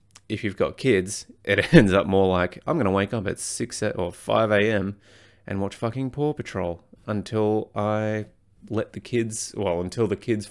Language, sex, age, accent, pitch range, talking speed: English, male, 20-39, Australian, 95-110 Hz, 190 wpm